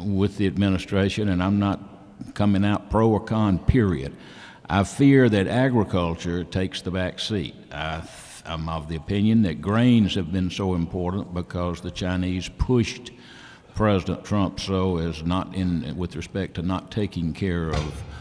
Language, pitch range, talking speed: English, 80-100 Hz, 155 wpm